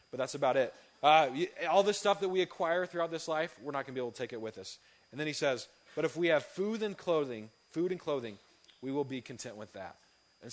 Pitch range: 120-155 Hz